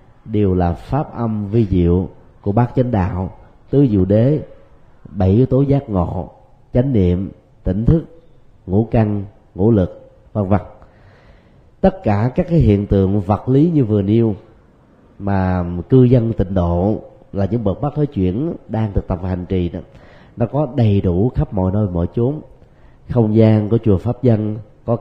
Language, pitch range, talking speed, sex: Vietnamese, 95-125 Hz, 175 wpm, male